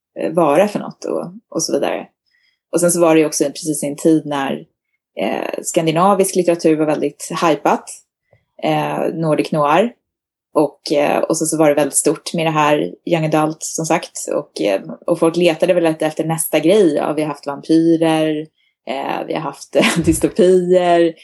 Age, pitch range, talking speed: 20-39, 155-190 Hz, 170 wpm